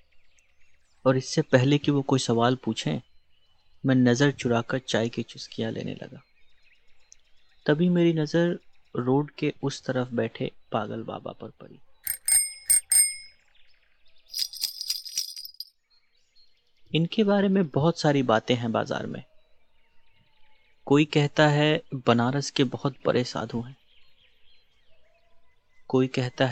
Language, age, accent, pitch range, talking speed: Hindi, 30-49, native, 115-150 Hz, 110 wpm